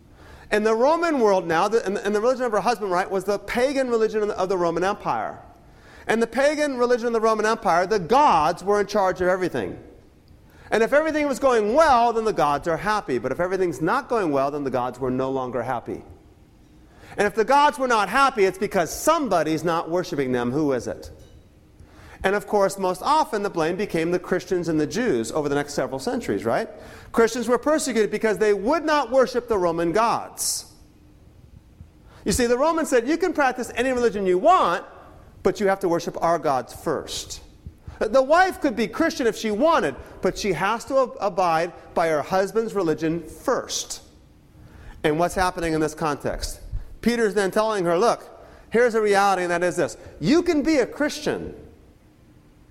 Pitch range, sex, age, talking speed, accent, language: 160-240 Hz, male, 40-59, 190 wpm, American, English